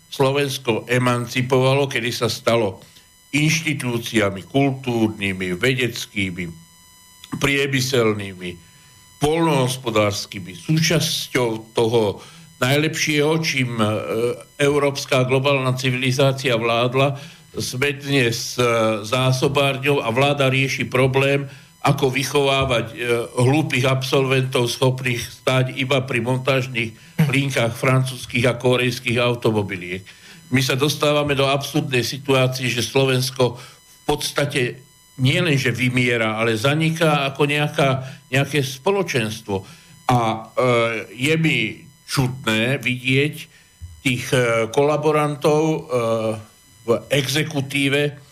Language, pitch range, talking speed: Slovak, 120-145 Hz, 90 wpm